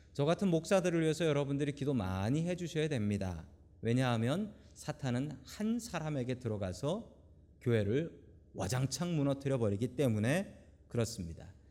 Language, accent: Korean, native